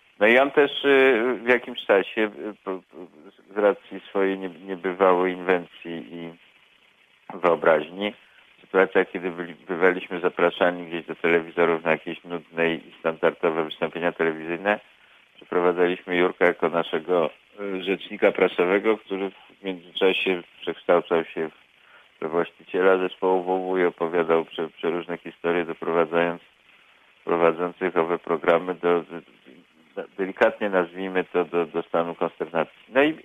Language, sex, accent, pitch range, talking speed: Polish, male, native, 85-110 Hz, 120 wpm